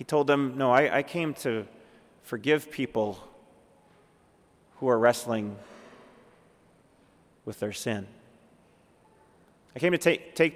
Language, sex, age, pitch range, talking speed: English, male, 30-49, 110-135 Hz, 120 wpm